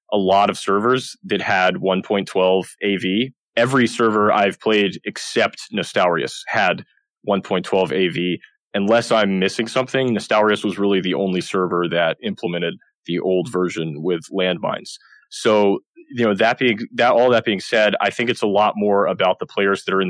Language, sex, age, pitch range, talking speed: English, male, 20-39, 95-115 Hz, 165 wpm